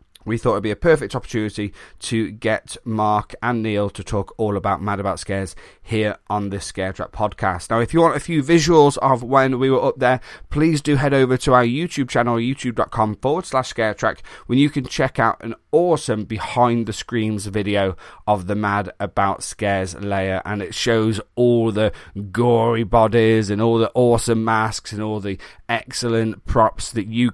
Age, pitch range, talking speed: 30-49, 100-125 Hz, 190 wpm